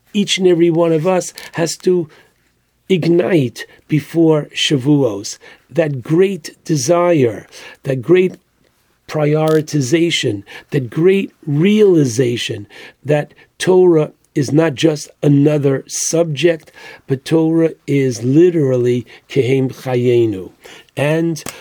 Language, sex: English, male